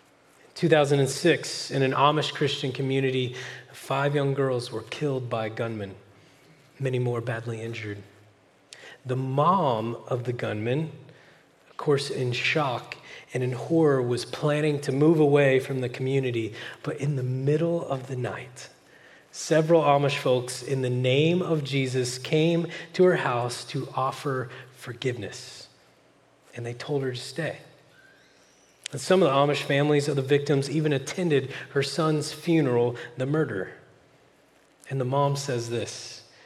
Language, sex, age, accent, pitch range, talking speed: English, male, 30-49, American, 125-150 Hz, 140 wpm